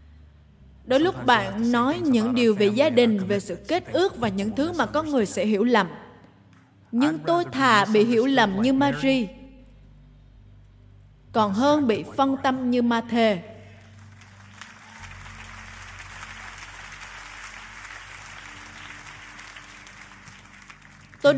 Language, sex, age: Vietnamese, female, 20-39